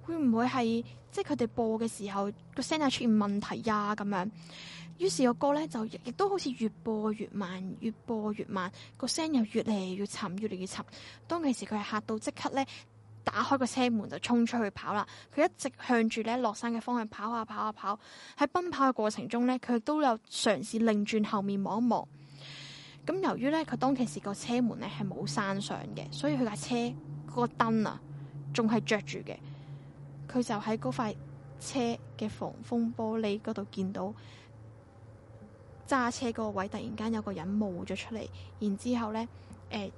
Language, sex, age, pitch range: Chinese, female, 10-29, 195-250 Hz